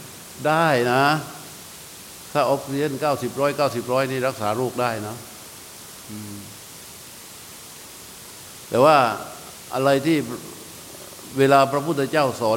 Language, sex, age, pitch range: Thai, male, 60-79, 125-140 Hz